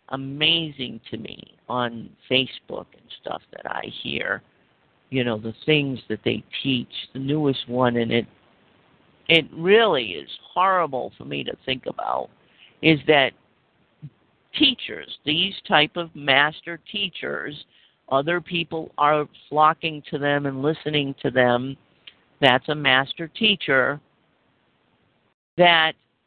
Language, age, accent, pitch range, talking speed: English, 50-69, American, 130-175 Hz, 125 wpm